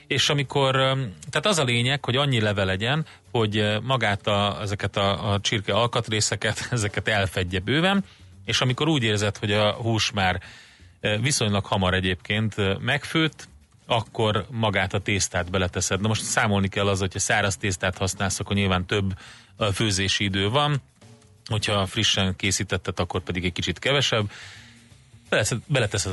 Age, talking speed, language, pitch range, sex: 30-49, 140 wpm, Hungarian, 100-120 Hz, male